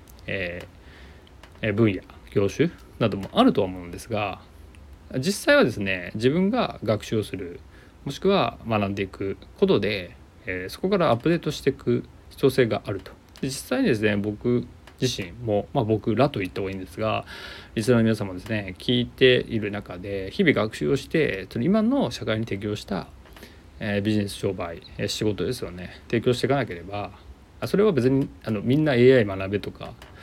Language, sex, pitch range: Japanese, male, 95-125 Hz